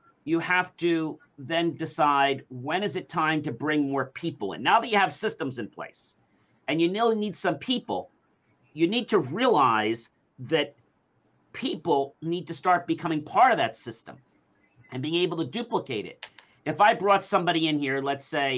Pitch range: 140-195 Hz